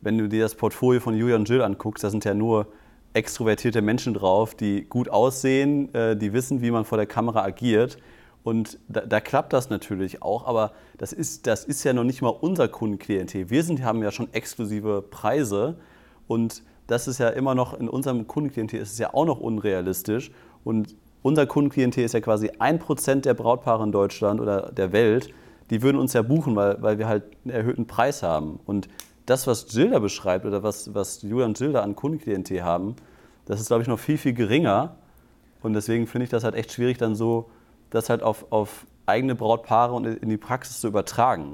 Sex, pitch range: male, 105-125 Hz